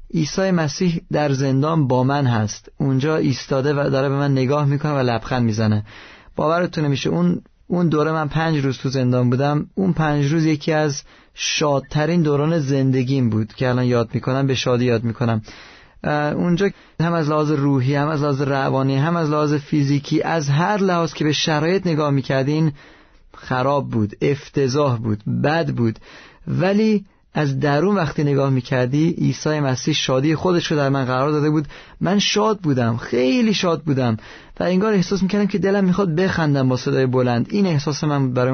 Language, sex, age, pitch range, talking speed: Persian, male, 30-49, 130-160 Hz, 170 wpm